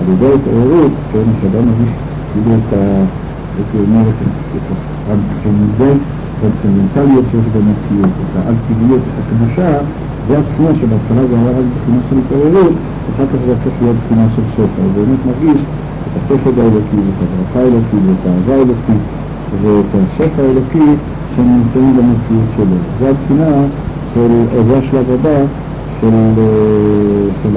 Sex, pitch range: male, 110-135 Hz